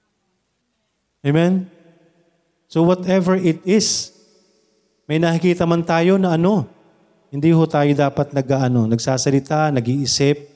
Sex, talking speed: male, 100 wpm